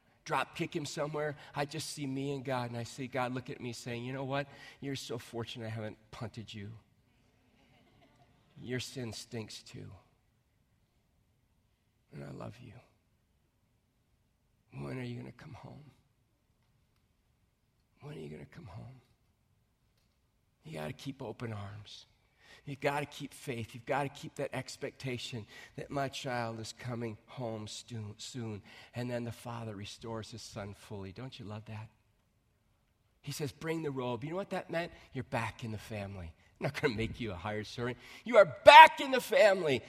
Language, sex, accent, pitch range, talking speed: English, male, American, 110-135 Hz, 175 wpm